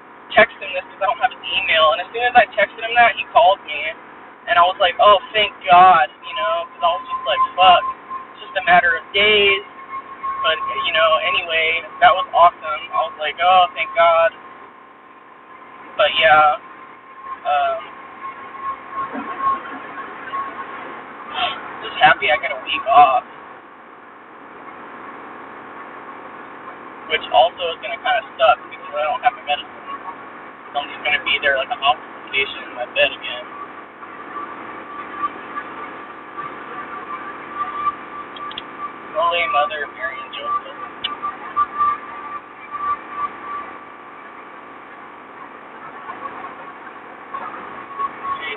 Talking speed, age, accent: 120 wpm, 20-39, American